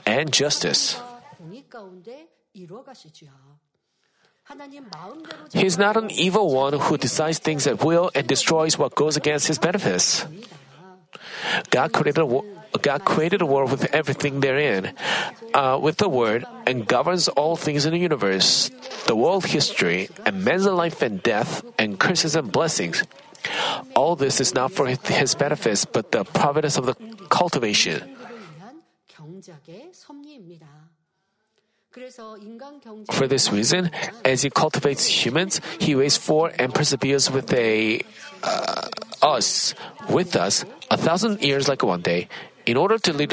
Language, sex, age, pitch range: Korean, male, 40-59, 145-200 Hz